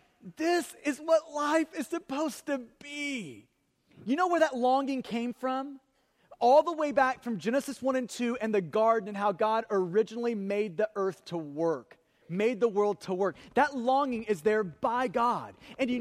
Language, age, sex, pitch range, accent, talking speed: English, 30-49, male, 210-265 Hz, American, 185 wpm